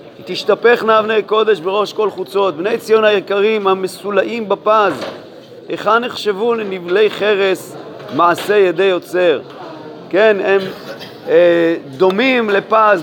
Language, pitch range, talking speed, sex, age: Hebrew, 190-225 Hz, 110 wpm, male, 40-59